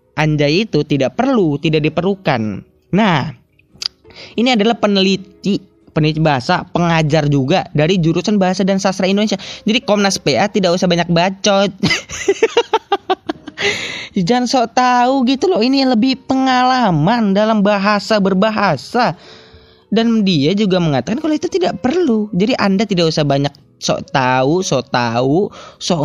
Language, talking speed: Indonesian, 130 wpm